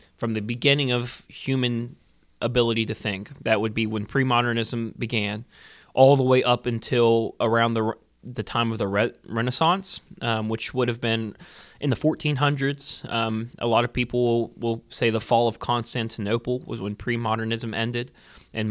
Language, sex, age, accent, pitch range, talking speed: English, male, 20-39, American, 110-130 Hz, 165 wpm